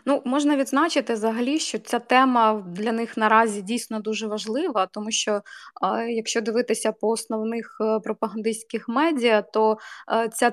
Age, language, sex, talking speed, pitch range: 20-39, Ukrainian, female, 130 wpm, 190-230 Hz